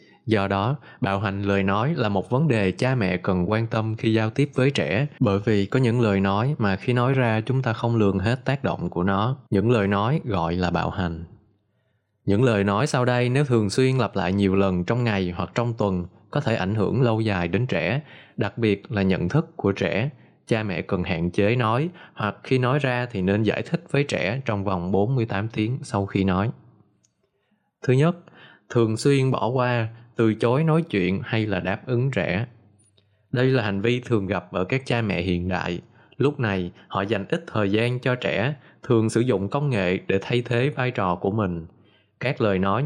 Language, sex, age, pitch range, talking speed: Vietnamese, male, 20-39, 100-125 Hz, 215 wpm